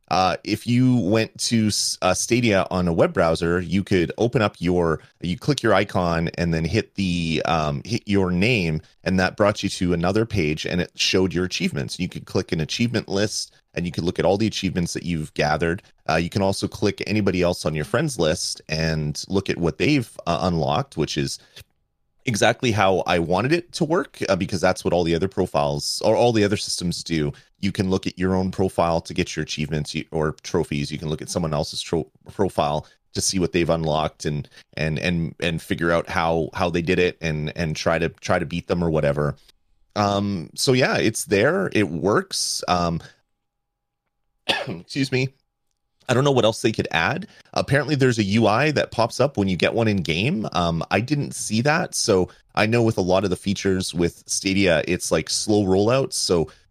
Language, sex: English, male